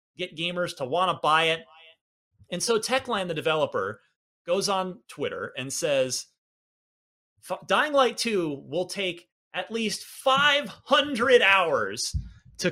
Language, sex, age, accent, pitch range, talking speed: English, male, 30-49, American, 160-225 Hz, 125 wpm